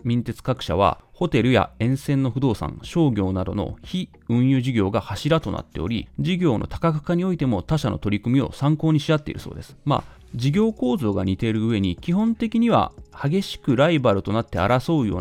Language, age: Japanese, 30-49